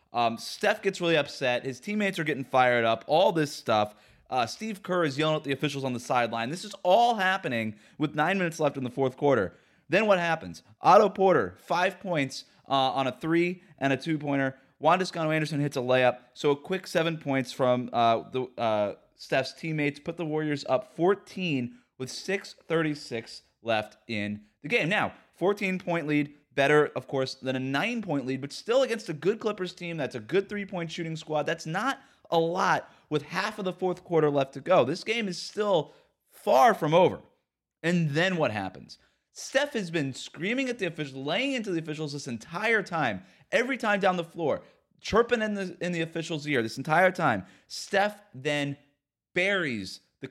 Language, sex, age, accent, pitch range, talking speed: English, male, 30-49, American, 135-185 Hz, 190 wpm